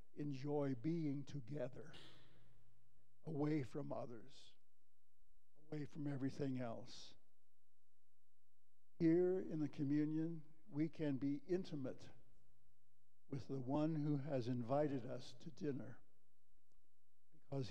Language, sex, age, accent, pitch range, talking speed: English, male, 60-79, American, 120-155 Hz, 95 wpm